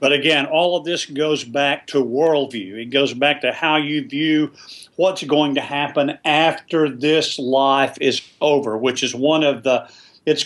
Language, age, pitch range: English, 50-69, 135-170 Hz